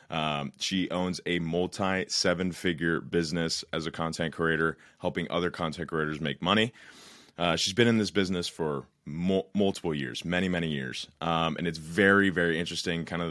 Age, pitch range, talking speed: 30-49, 80-90 Hz, 170 wpm